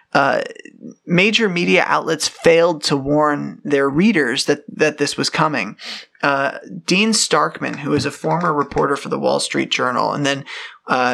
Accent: American